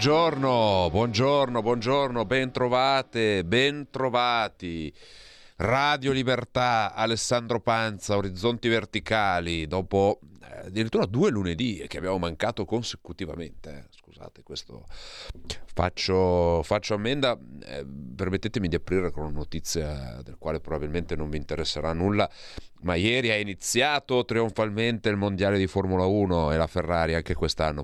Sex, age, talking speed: male, 40-59, 115 wpm